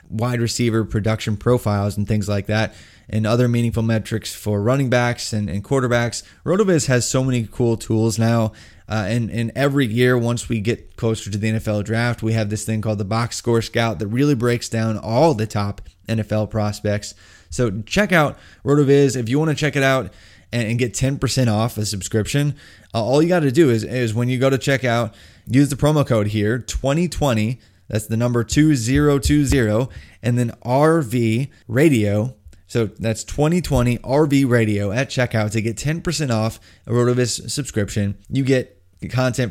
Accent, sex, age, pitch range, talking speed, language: American, male, 20-39, 105-130 Hz, 180 wpm, English